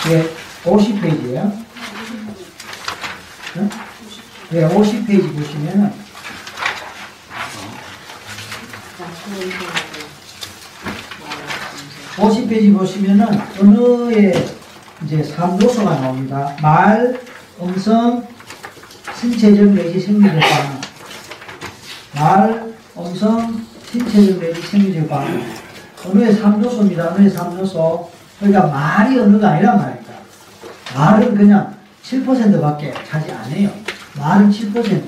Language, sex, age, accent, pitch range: Korean, male, 40-59, native, 165-205 Hz